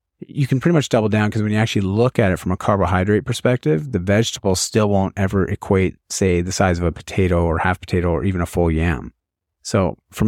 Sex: male